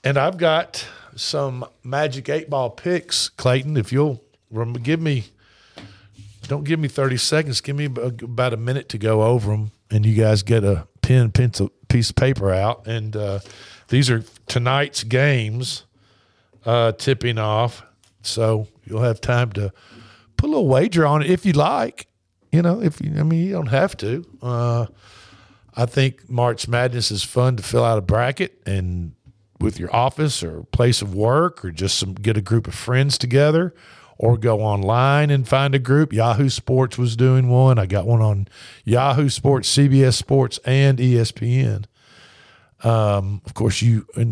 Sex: male